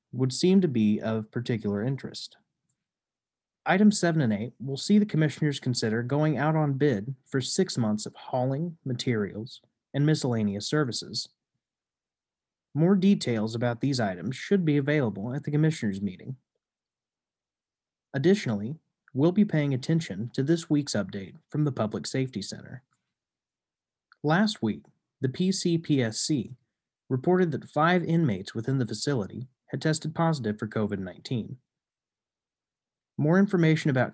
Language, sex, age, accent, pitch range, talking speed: English, male, 30-49, American, 110-155 Hz, 130 wpm